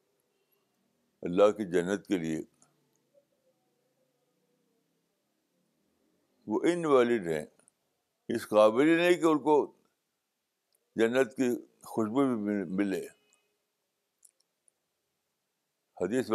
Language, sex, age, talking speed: Urdu, male, 60-79, 75 wpm